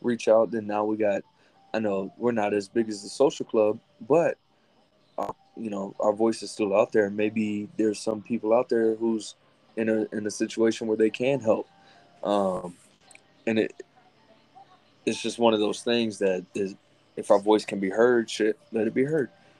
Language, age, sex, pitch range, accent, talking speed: English, 20-39, male, 105-120 Hz, American, 195 wpm